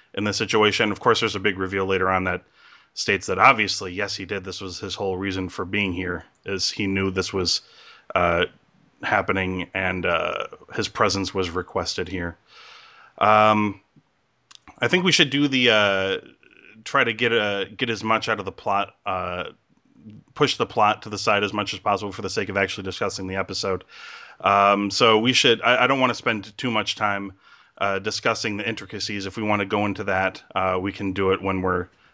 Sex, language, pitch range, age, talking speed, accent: male, English, 95-110 Hz, 30-49, 205 wpm, American